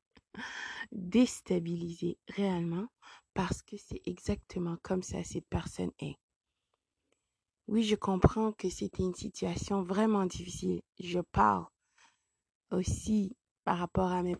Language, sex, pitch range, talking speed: French, female, 180-220 Hz, 115 wpm